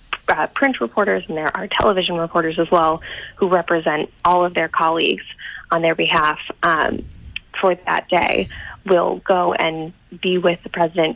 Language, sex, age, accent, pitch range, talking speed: English, female, 20-39, American, 170-195 Hz, 160 wpm